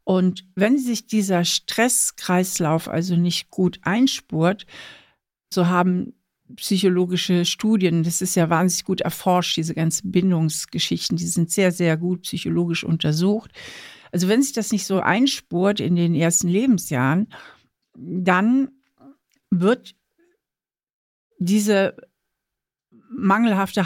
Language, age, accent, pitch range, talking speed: German, 60-79, German, 180-220 Hz, 110 wpm